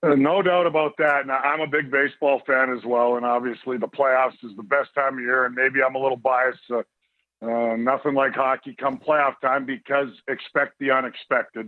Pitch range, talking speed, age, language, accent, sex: 125-145 Hz, 210 wpm, 50-69, English, American, male